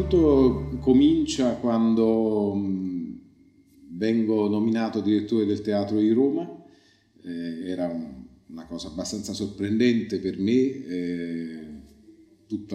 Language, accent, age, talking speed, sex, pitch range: Italian, native, 40-59, 80 wpm, male, 95-130 Hz